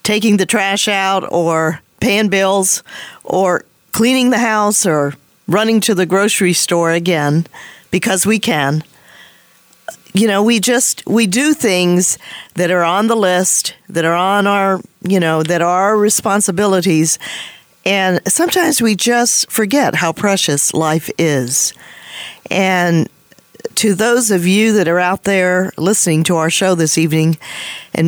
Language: English